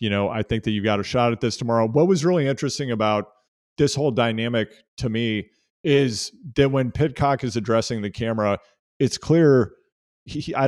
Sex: male